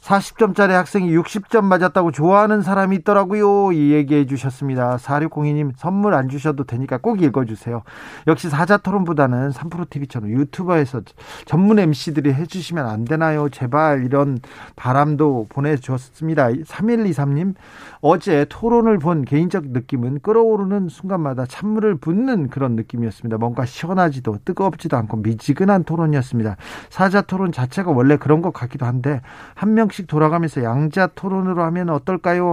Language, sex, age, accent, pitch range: Korean, male, 40-59, native, 135-180 Hz